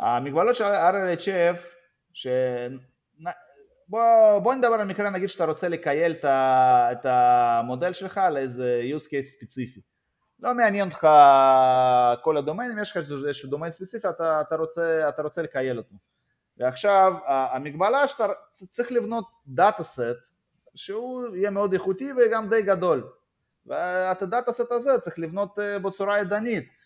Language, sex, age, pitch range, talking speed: Hebrew, male, 20-39, 135-200 Hz, 130 wpm